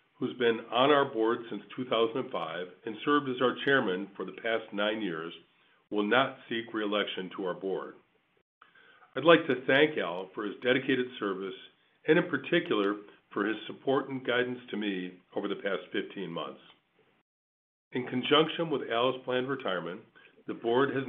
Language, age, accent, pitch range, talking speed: English, 50-69, American, 105-135 Hz, 160 wpm